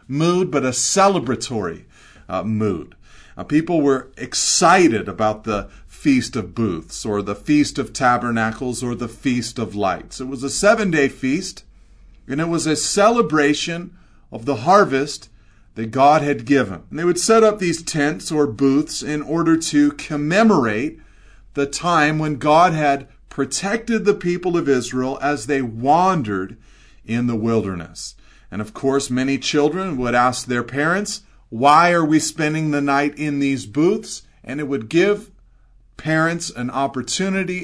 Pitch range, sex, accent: 115-155 Hz, male, American